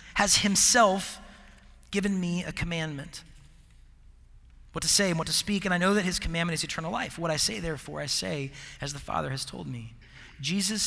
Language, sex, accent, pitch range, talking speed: English, male, American, 120-190 Hz, 195 wpm